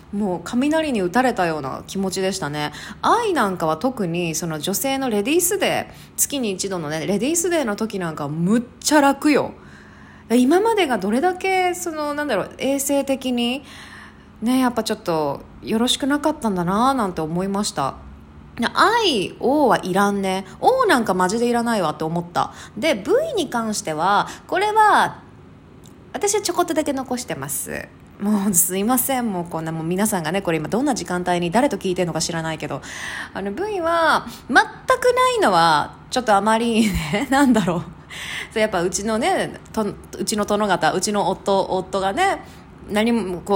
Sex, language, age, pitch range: female, Japanese, 20-39, 180-290 Hz